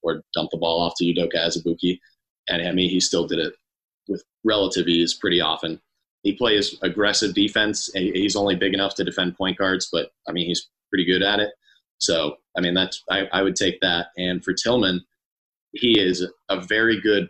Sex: male